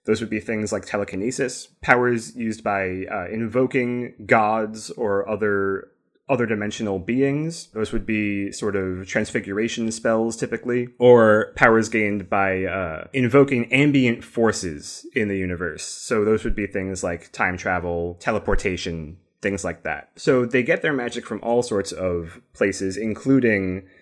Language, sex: English, male